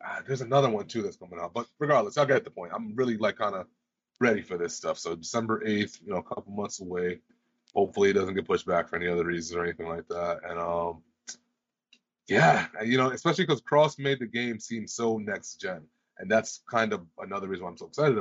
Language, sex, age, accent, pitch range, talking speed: English, male, 30-49, American, 95-145 Hz, 235 wpm